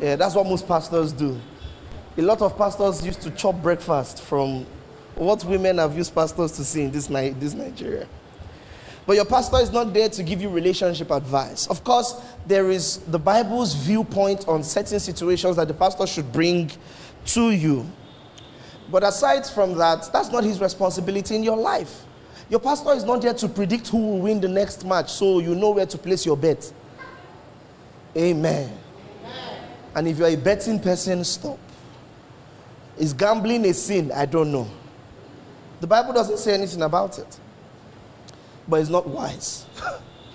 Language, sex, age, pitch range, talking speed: English, male, 20-39, 150-205 Hz, 170 wpm